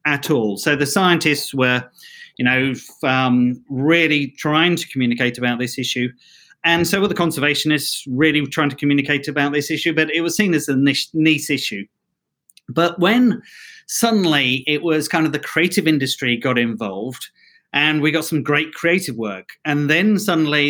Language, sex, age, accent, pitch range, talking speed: English, male, 40-59, British, 135-170 Hz, 170 wpm